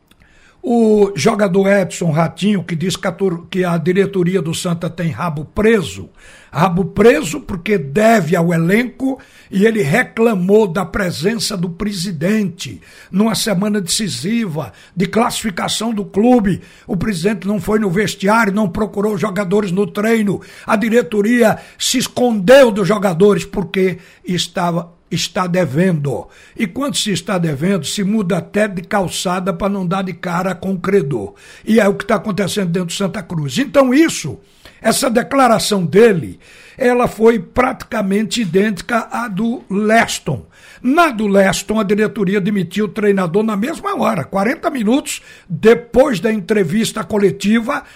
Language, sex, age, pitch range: Portuguese, male, 60-79, 185-220 Hz